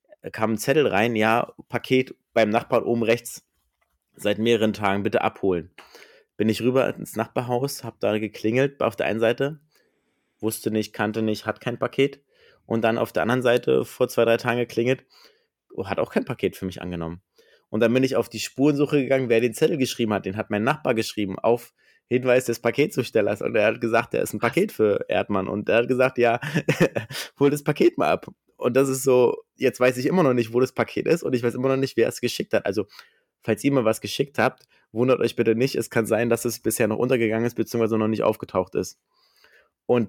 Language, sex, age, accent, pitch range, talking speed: German, male, 30-49, German, 110-135 Hz, 215 wpm